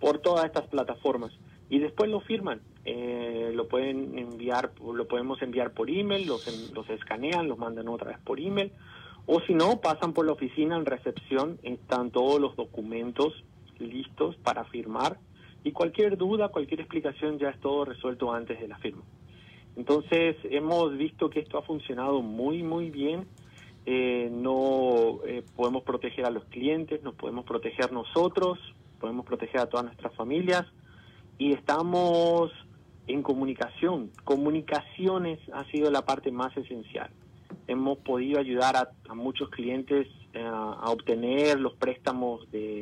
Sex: male